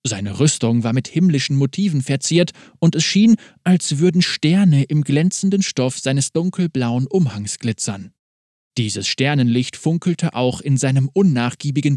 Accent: German